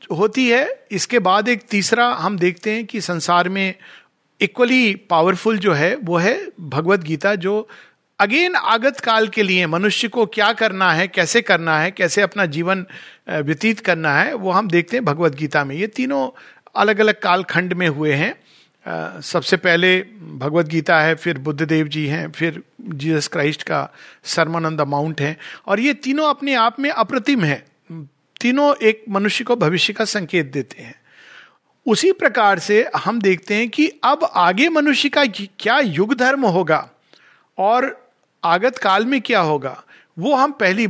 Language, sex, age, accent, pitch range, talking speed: Hindi, male, 50-69, native, 165-230 Hz, 165 wpm